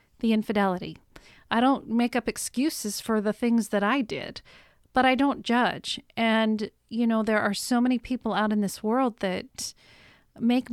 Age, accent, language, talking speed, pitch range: 40-59, American, English, 175 wpm, 205-245 Hz